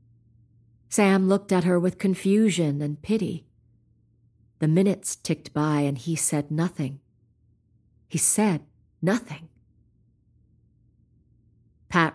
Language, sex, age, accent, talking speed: English, female, 40-59, American, 100 wpm